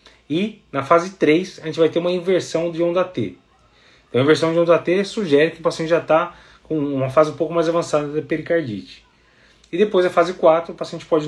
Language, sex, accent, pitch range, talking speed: Portuguese, male, Brazilian, 140-170 Hz, 225 wpm